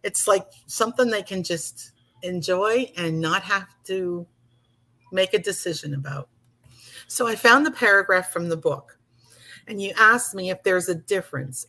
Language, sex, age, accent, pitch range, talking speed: English, female, 50-69, American, 125-185 Hz, 160 wpm